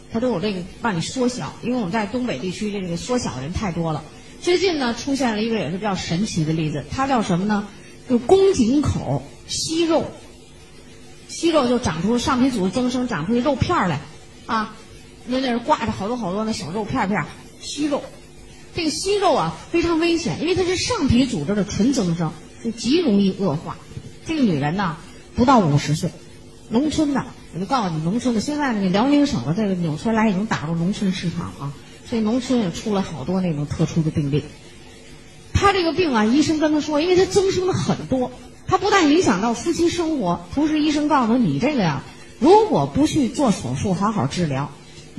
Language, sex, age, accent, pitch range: Chinese, female, 30-49, native, 175-275 Hz